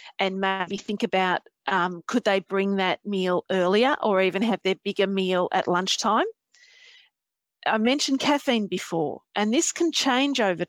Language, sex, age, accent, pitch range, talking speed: English, female, 40-59, Australian, 195-250 Hz, 155 wpm